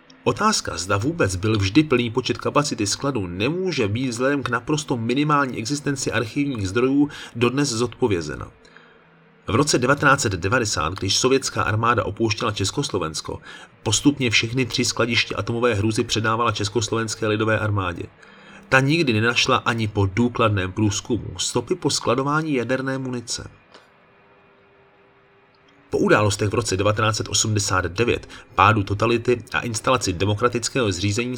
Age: 30-49